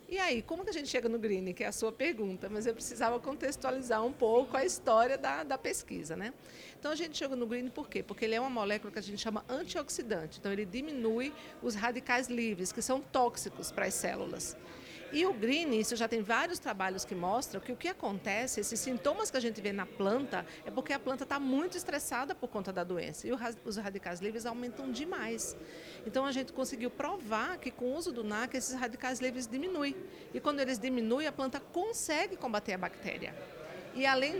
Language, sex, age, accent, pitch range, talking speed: Portuguese, female, 40-59, Brazilian, 225-285 Hz, 215 wpm